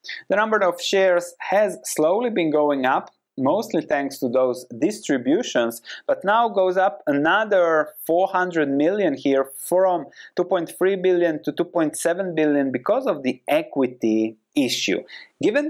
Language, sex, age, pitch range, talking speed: English, male, 20-39, 130-210 Hz, 130 wpm